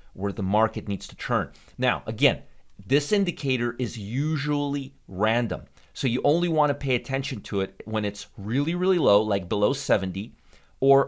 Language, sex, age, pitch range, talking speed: English, male, 30-49, 105-135 Hz, 170 wpm